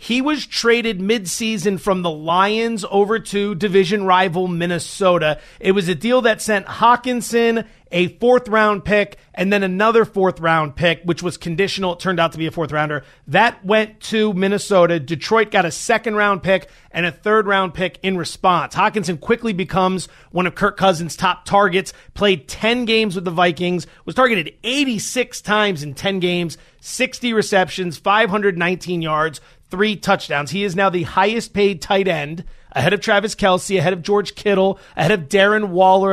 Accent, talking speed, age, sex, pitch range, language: American, 165 wpm, 30-49, male, 170-215 Hz, English